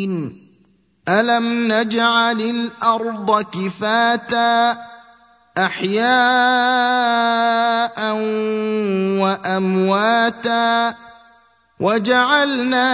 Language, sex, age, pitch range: Arabic, male, 20-39, 195-235 Hz